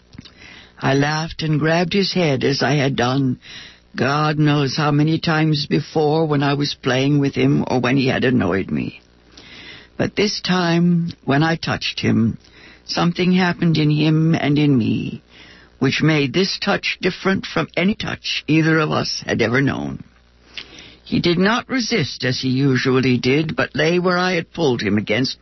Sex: female